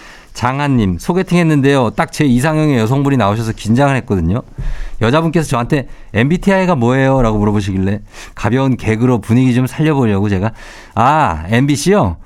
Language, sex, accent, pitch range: Korean, male, native, 100-145 Hz